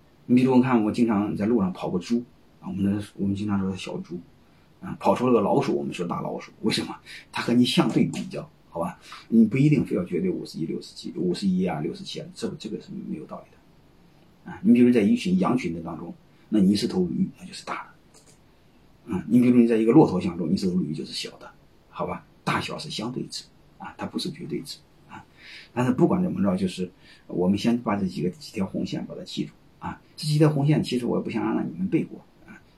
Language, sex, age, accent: Chinese, male, 30-49, native